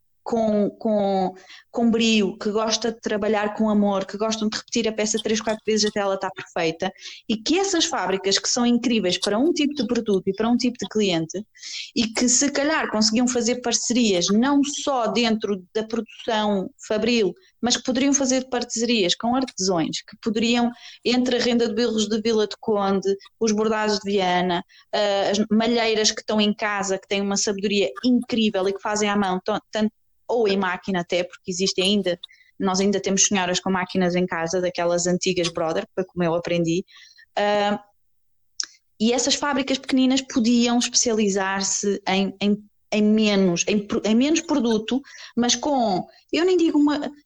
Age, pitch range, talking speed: 20-39, 195-245 Hz, 170 wpm